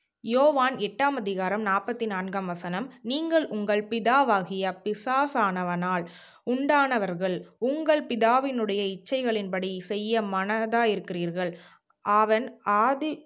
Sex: female